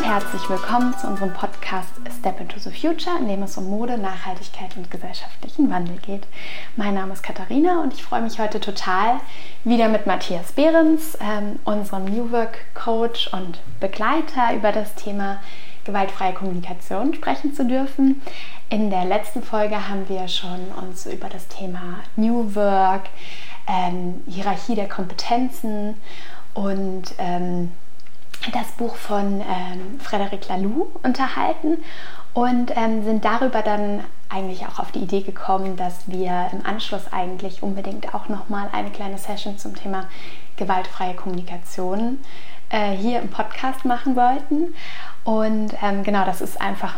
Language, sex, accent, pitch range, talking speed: German, female, German, 190-235 Hz, 145 wpm